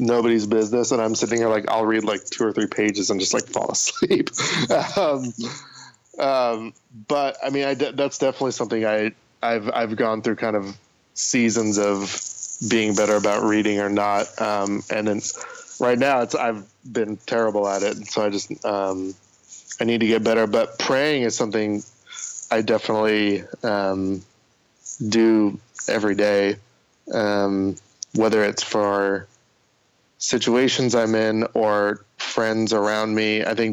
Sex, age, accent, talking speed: male, 20-39, American, 155 wpm